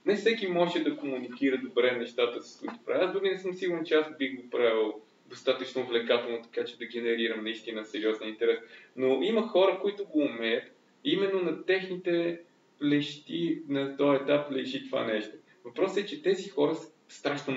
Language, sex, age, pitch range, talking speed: Bulgarian, male, 20-39, 125-175 Hz, 180 wpm